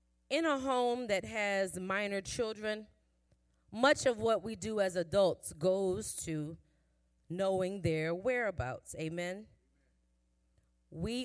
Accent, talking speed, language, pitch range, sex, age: American, 110 wpm, English, 170-255 Hz, female, 30-49